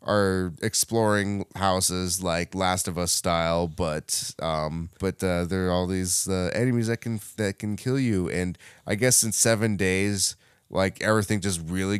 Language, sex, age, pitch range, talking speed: English, male, 20-39, 90-110 Hz, 170 wpm